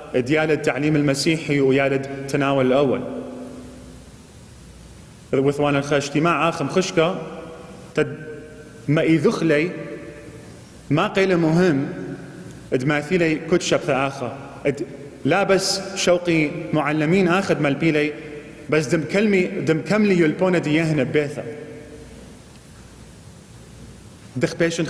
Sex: male